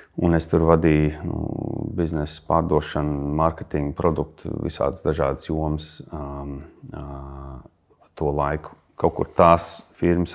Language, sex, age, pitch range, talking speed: English, male, 30-49, 75-90 Hz, 110 wpm